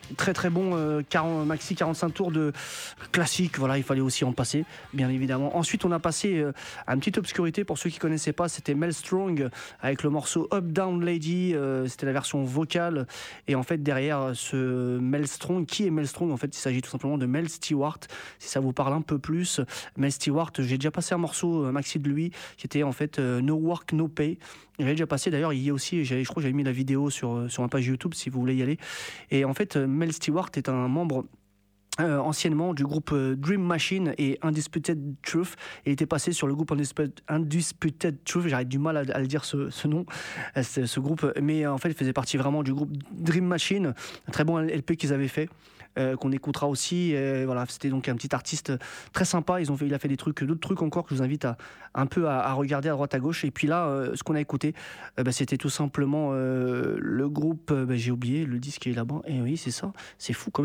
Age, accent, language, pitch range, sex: 30-49, French, Japanese, 135-165 Hz, male